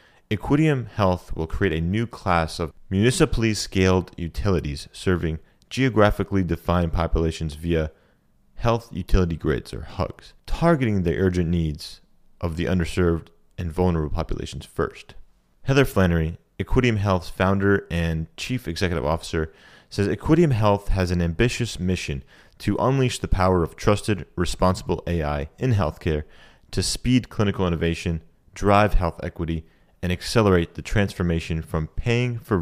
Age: 30-49